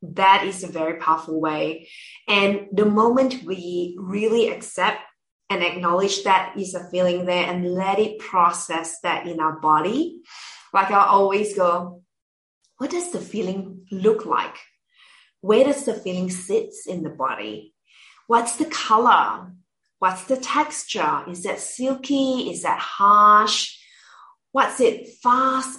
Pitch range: 175-250 Hz